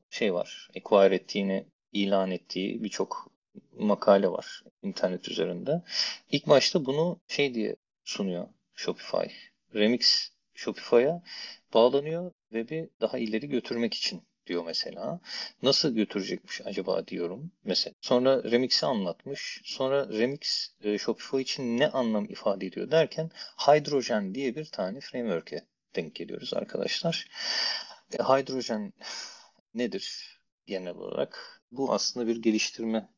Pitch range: 105-150 Hz